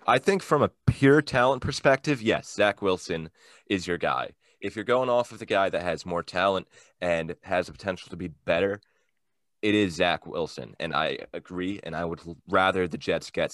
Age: 20-39